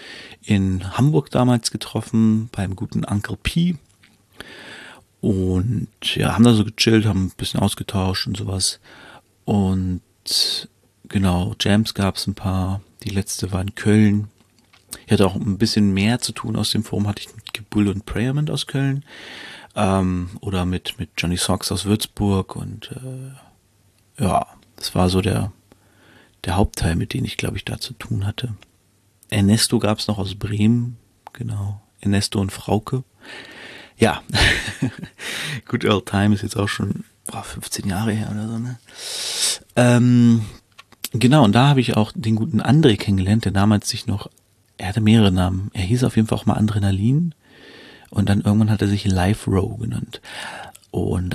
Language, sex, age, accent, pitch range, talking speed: German, male, 40-59, German, 100-115 Hz, 160 wpm